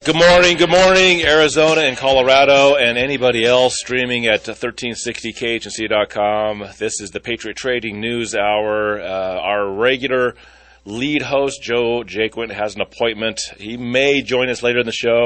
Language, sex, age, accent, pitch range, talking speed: English, male, 30-49, American, 100-120 Hz, 150 wpm